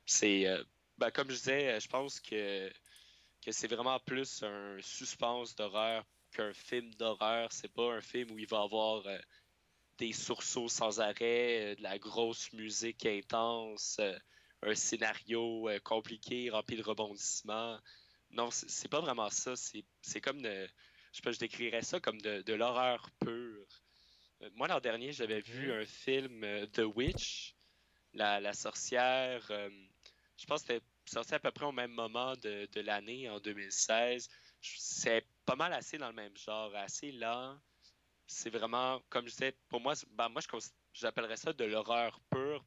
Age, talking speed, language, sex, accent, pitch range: 20-39, 165 wpm, English, male, Canadian, 105-125 Hz